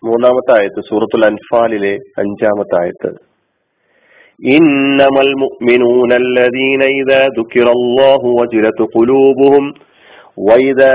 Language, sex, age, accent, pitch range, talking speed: Malayalam, male, 40-59, native, 115-140 Hz, 90 wpm